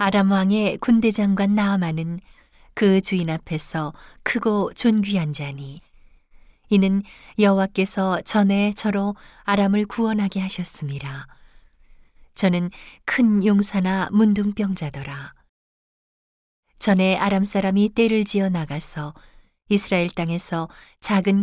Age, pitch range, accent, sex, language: 40-59, 155-205 Hz, native, female, Korean